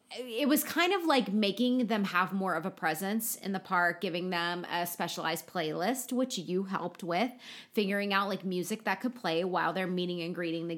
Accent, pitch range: American, 175-215 Hz